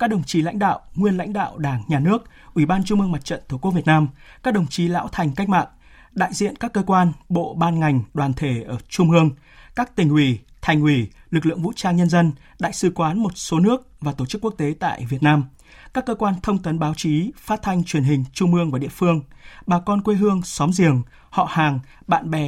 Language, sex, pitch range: Vietnamese, male, 150-195 Hz